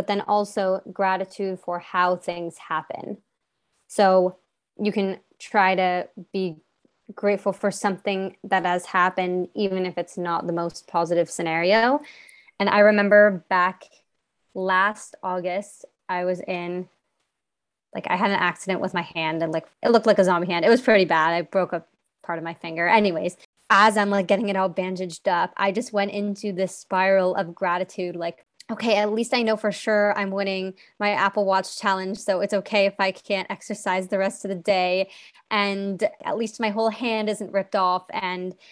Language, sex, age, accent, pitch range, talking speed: English, female, 20-39, American, 185-210 Hz, 180 wpm